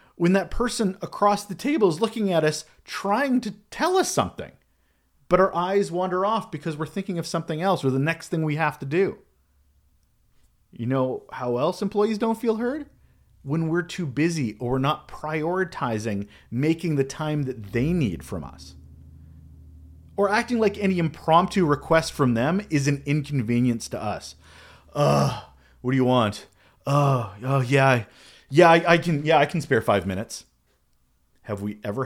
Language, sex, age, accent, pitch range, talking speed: English, male, 30-49, American, 110-180 Hz, 170 wpm